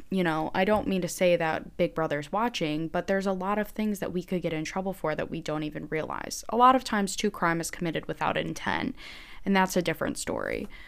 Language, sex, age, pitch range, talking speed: English, female, 10-29, 165-190 Hz, 245 wpm